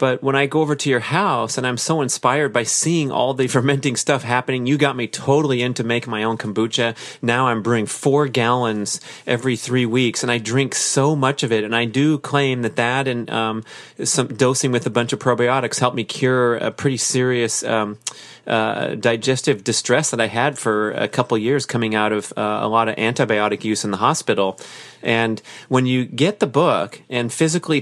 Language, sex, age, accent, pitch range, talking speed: English, male, 30-49, American, 115-145 Hz, 205 wpm